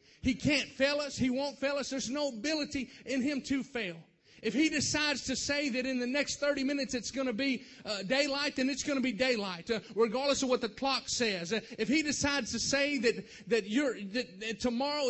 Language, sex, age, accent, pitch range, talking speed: English, male, 30-49, American, 215-275 Hz, 220 wpm